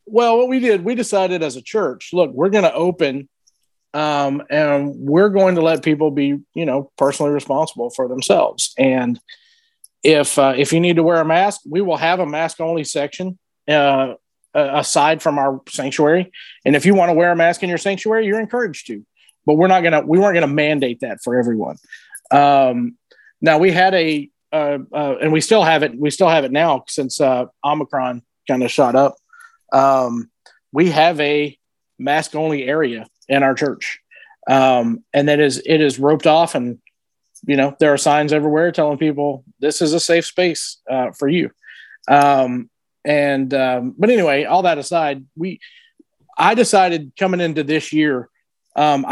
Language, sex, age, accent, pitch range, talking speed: English, male, 40-59, American, 140-175 Hz, 185 wpm